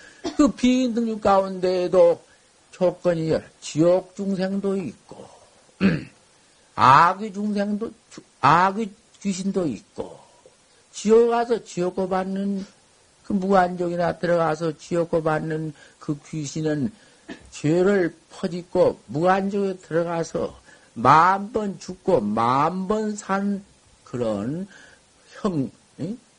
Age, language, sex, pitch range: 50-69, Korean, male, 155-230 Hz